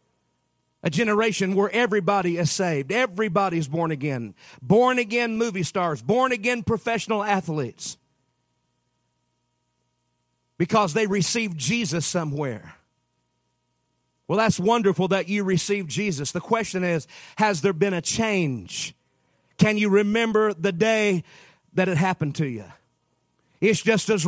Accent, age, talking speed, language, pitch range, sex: American, 40-59, 120 wpm, English, 185-225 Hz, male